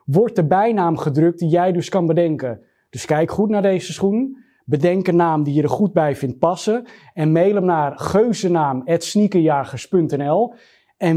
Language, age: Dutch, 30-49